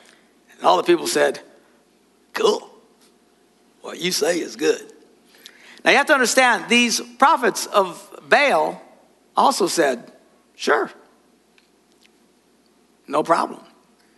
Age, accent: 60-79, American